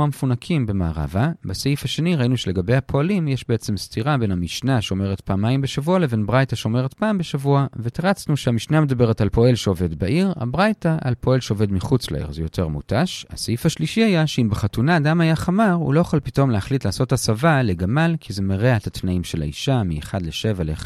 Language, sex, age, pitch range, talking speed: Hebrew, male, 40-59, 95-150 Hz, 180 wpm